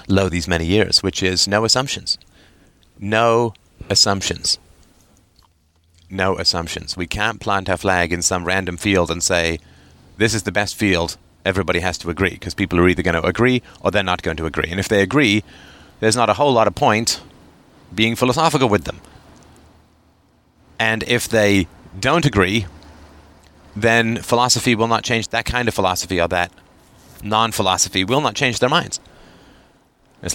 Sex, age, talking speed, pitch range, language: male, 30-49, 165 wpm, 90-115 Hz, English